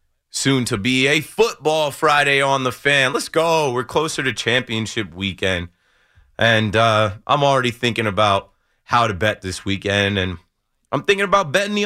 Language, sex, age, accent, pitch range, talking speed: English, male, 30-49, American, 100-130 Hz, 165 wpm